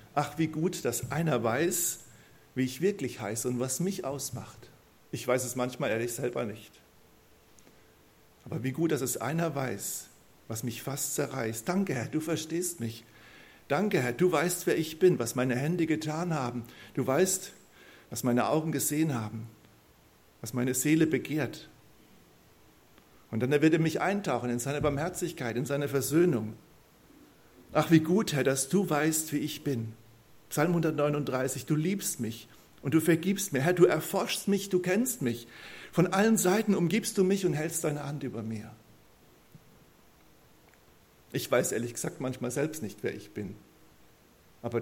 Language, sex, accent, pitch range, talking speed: German, male, German, 120-165 Hz, 160 wpm